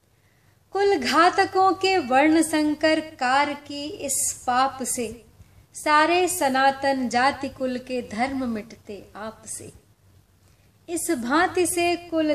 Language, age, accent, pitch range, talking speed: Hindi, 30-49, native, 230-320 Hz, 110 wpm